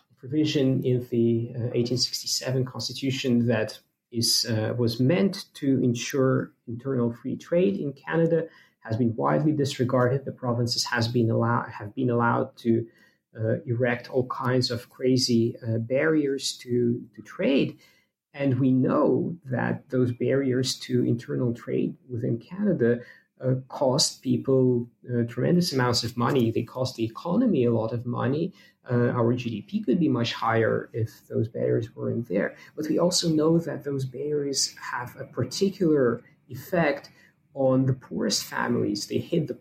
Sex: male